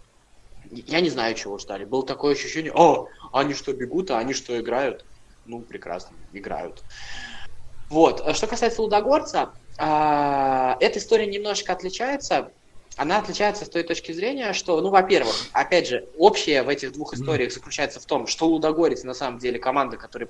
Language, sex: Russian, male